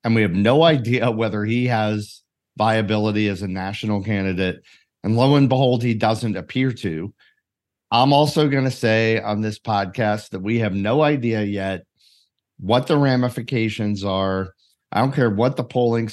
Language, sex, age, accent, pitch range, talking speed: English, male, 40-59, American, 105-130 Hz, 165 wpm